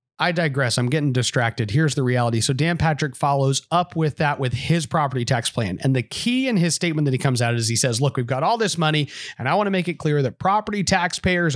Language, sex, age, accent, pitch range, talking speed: English, male, 30-49, American, 130-170 Hz, 255 wpm